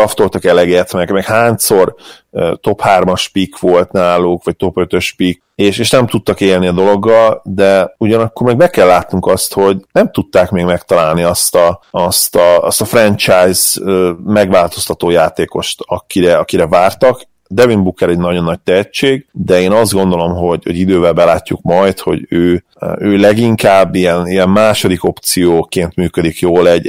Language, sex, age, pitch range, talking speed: Hungarian, male, 30-49, 90-105 Hz, 160 wpm